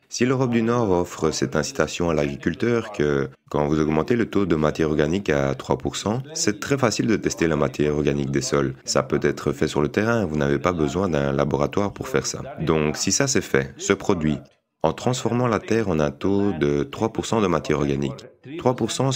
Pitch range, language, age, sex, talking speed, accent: 75-110 Hz, English, 30-49, male, 205 wpm, French